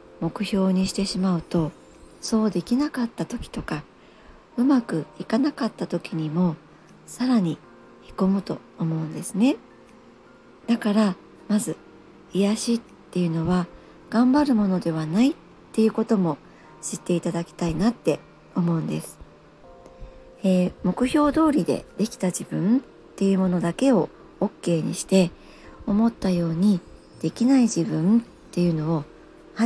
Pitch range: 175-235 Hz